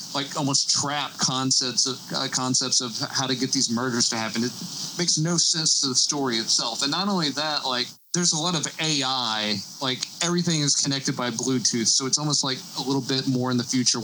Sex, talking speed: male, 215 wpm